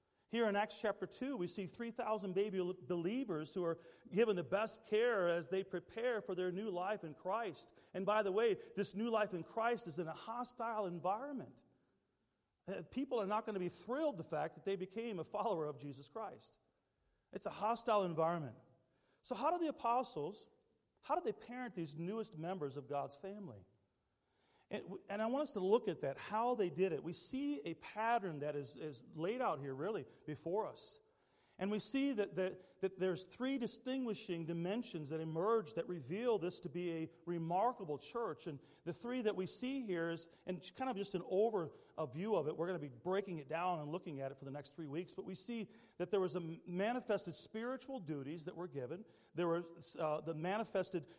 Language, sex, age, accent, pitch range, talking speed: English, male, 40-59, American, 165-220 Hz, 200 wpm